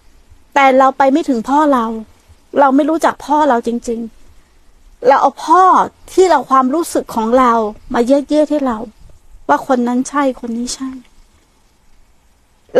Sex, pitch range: female, 245-300 Hz